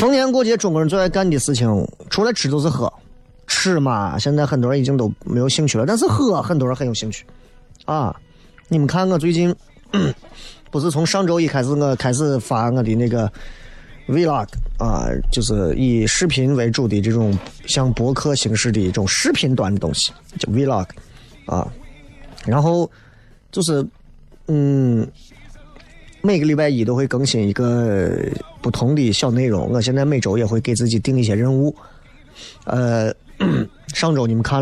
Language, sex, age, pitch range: Chinese, male, 30-49, 110-140 Hz